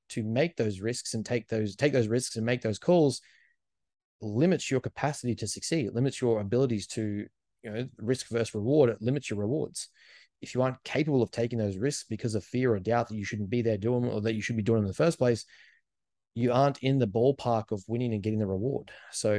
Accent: Australian